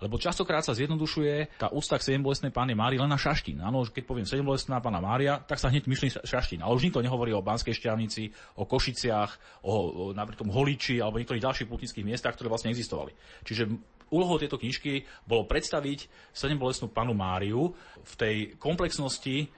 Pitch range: 115-145 Hz